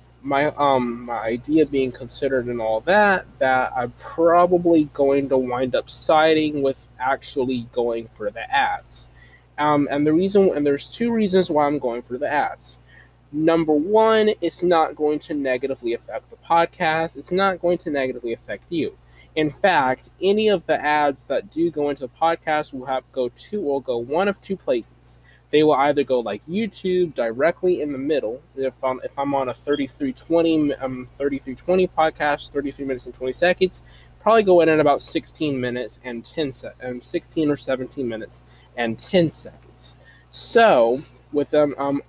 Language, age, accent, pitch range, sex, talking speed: English, 20-39, American, 125-165 Hz, male, 180 wpm